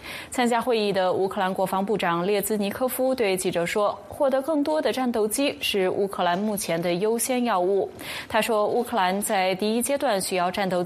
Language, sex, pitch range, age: Chinese, female, 185-240 Hz, 20-39